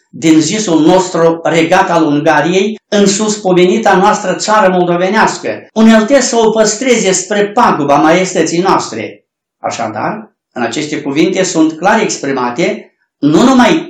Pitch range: 155-215 Hz